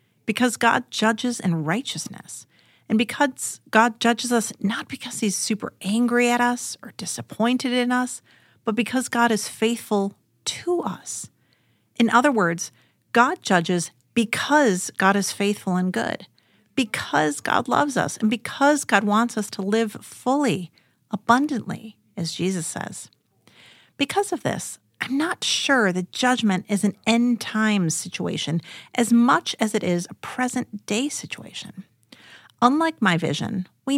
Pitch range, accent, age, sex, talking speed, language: 190-245 Hz, American, 40-59, female, 140 wpm, English